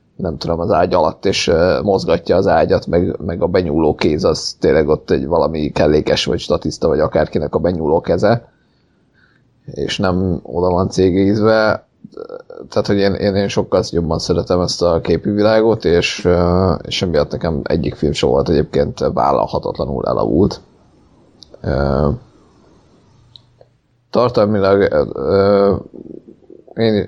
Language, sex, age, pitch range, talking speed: Hungarian, male, 30-49, 85-100 Hz, 125 wpm